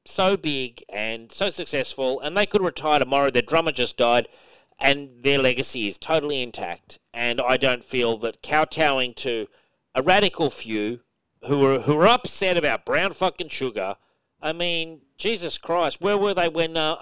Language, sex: English, male